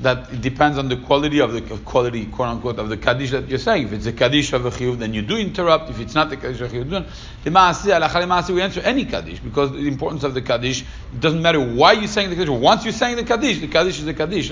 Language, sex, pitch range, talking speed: English, male, 120-160 Hz, 275 wpm